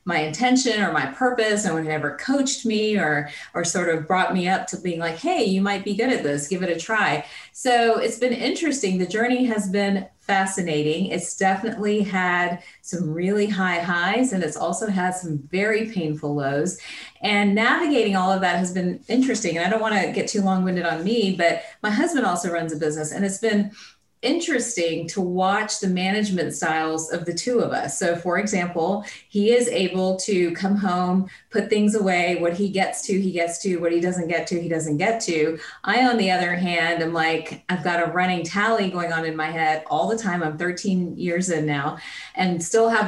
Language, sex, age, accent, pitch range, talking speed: English, female, 30-49, American, 175-225 Hz, 210 wpm